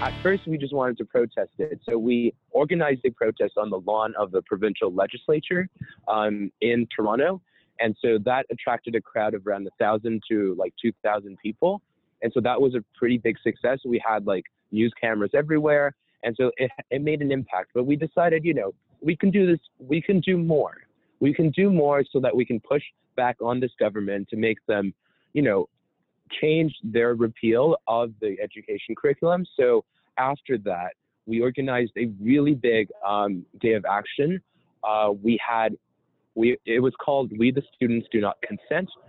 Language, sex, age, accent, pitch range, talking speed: English, male, 20-39, American, 115-155 Hz, 185 wpm